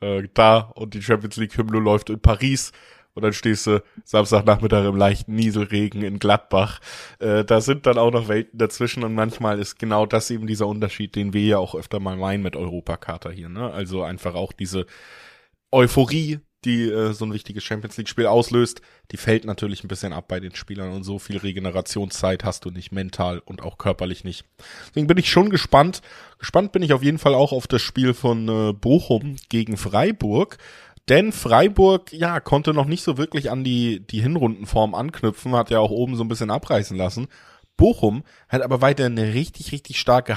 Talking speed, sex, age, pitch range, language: 185 wpm, male, 20-39, 105-135 Hz, German